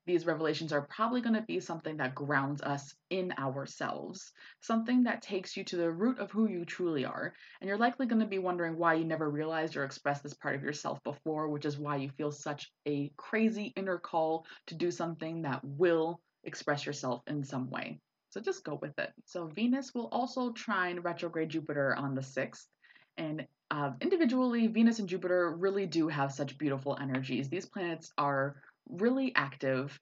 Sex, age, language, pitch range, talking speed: female, 20-39, English, 140-185 Hz, 190 wpm